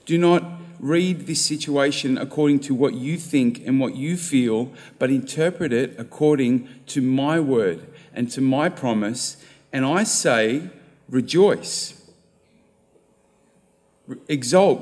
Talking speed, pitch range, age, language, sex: 120 wpm, 135-180 Hz, 40-59, English, male